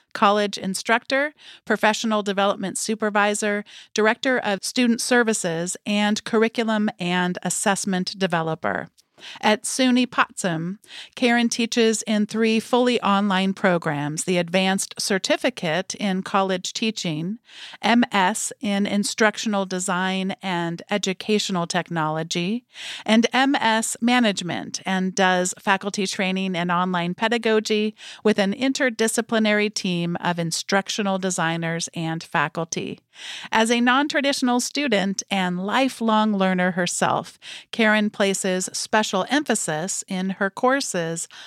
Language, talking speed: English, 105 wpm